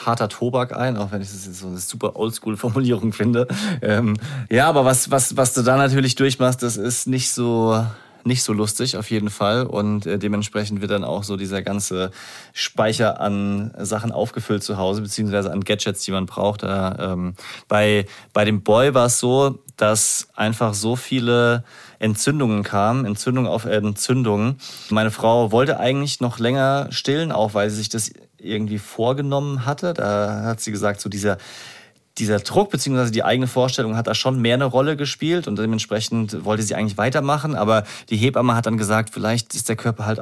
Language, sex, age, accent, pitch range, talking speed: German, male, 30-49, German, 105-125 Hz, 185 wpm